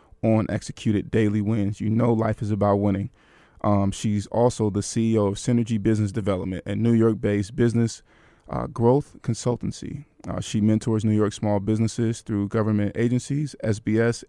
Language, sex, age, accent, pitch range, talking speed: English, male, 20-39, American, 105-115 Hz, 155 wpm